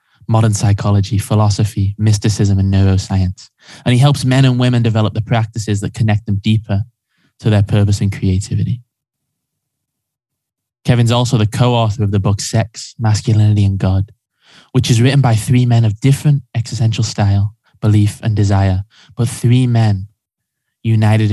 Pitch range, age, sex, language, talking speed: 100-120 Hz, 10-29, male, English, 145 wpm